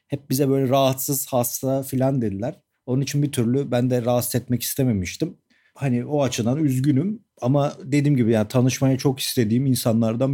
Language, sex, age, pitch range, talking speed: Turkish, male, 40-59, 115-140 Hz, 165 wpm